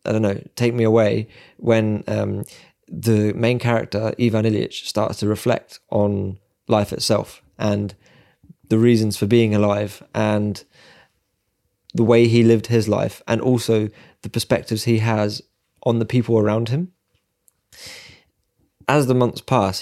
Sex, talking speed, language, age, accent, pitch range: male, 140 wpm, English, 20-39, British, 105-120 Hz